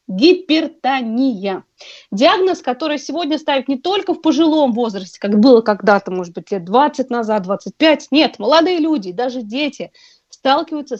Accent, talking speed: native, 135 wpm